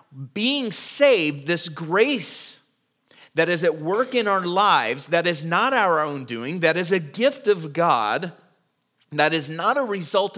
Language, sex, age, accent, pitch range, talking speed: English, male, 30-49, American, 130-200 Hz, 160 wpm